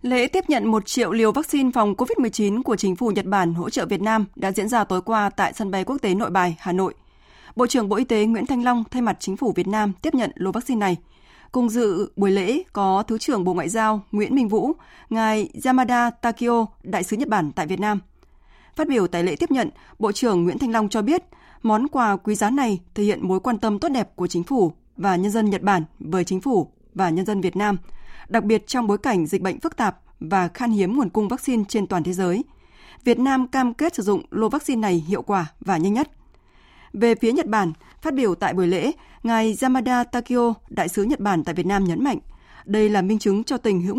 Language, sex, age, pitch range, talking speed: Vietnamese, female, 20-39, 195-245 Hz, 240 wpm